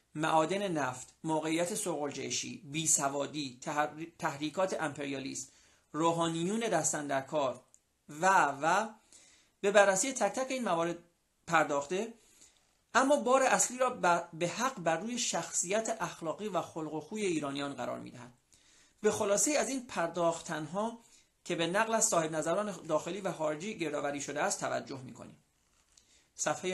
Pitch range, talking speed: 150-205 Hz, 130 wpm